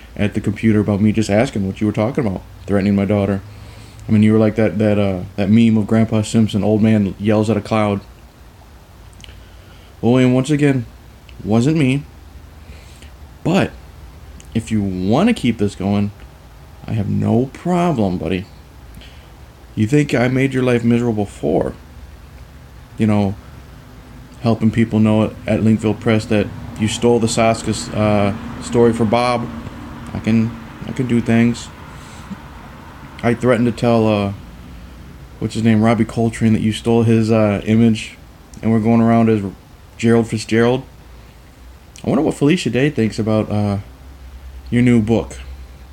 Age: 30-49